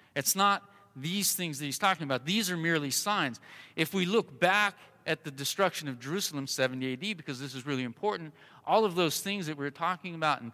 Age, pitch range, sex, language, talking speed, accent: 40-59, 120-175 Hz, male, English, 210 wpm, American